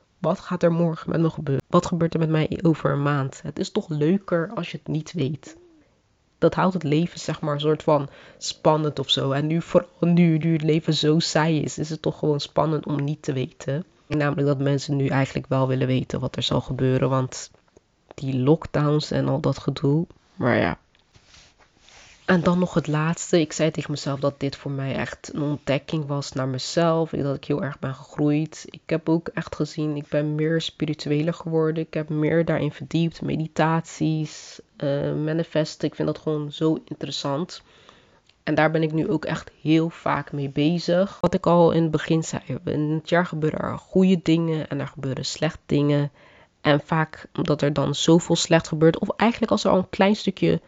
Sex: female